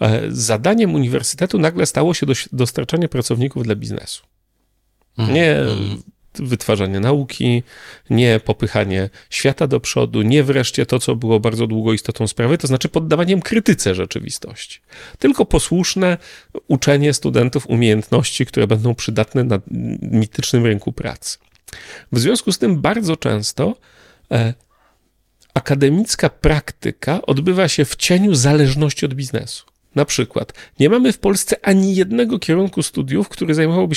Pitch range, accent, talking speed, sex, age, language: 120-175 Hz, native, 125 wpm, male, 40-59, Polish